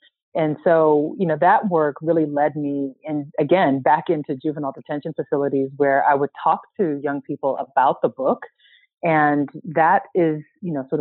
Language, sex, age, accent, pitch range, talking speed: English, female, 30-49, American, 145-170 Hz, 175 wpm